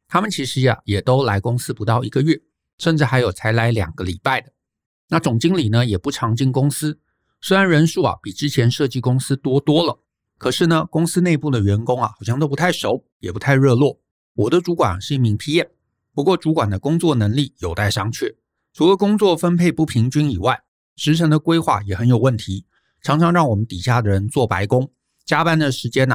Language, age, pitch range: Chinese, 50-69, 110-150 Hz